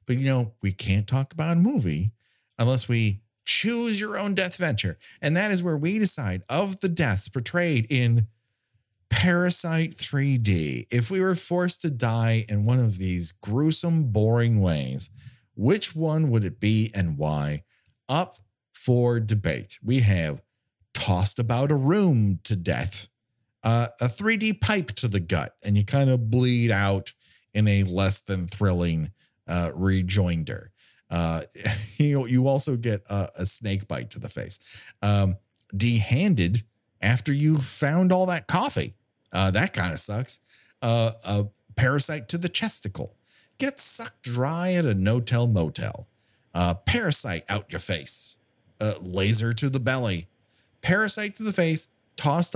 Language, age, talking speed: English, 40-59, 155 wpm